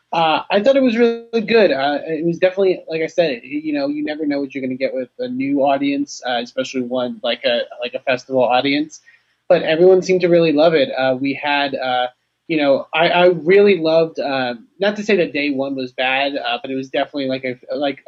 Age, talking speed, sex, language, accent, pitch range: 30-49, 235 wpm, male, English, American, 130-180 Hz